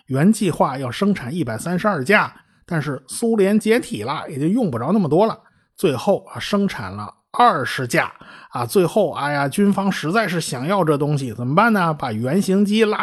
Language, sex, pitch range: Chinese, male, 140-205 Hz